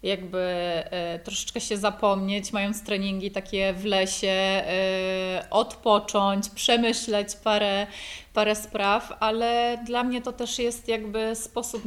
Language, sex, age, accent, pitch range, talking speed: Polish, female, 30-49, native, 205-235 Hz, 110 wpm